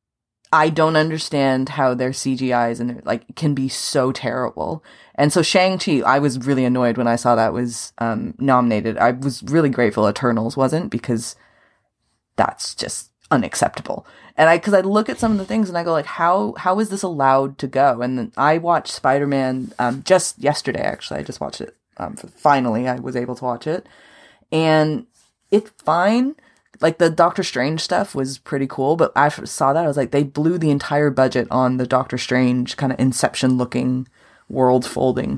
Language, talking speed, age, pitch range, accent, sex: English, 190 wpm, 20-39, 125-160 Hz, American, female